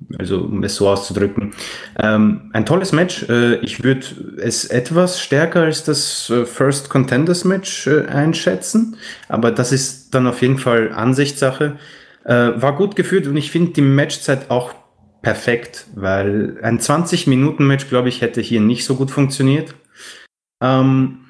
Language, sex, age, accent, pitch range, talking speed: German, male, 30-49, German, 110-140 Hz, 145 wpm